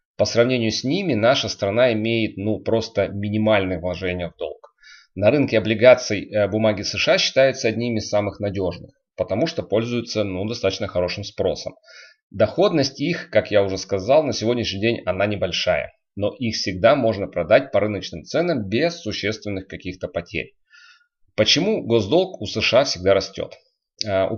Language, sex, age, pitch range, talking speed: Russian, male, 30-49, 100-130 Hz, 150 wpm